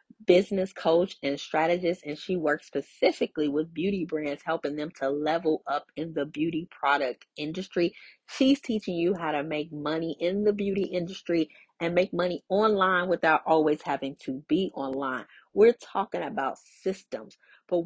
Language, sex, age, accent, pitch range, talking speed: English, female, 30-49, American, 155-190 Hz, 160 wpm